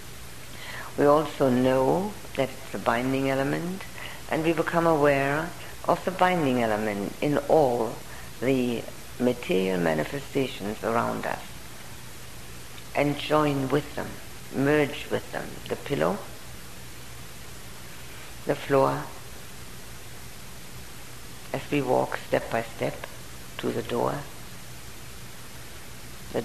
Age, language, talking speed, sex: 60-79, English, 100 wpm, female